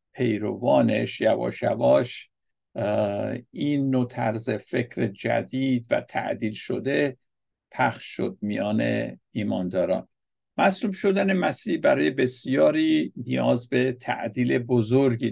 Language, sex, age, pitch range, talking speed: Persian, male, 60-79, 110-135 Hz, 95 wpm